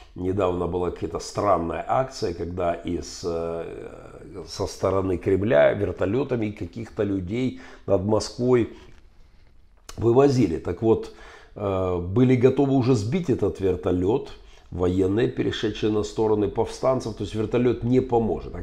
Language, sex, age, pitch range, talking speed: Russian, male, 50-69, 95-125 Hz, 115 wpm